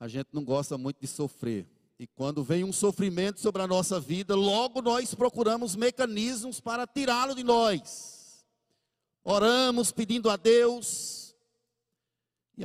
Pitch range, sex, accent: 155-210 Hz, male, Brazilian